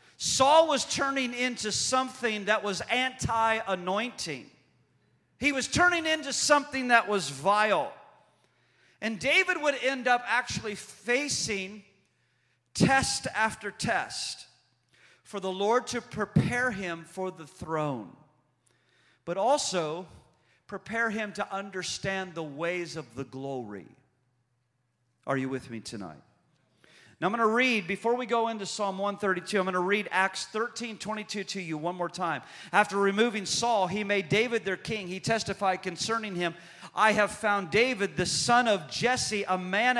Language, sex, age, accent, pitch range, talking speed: English, male, 40-59, American, 180-230 Hz, 145 wpm